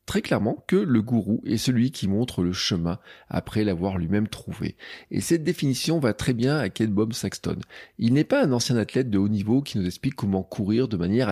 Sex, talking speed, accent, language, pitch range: male, 220 wpm, French, French, 110-145 Hz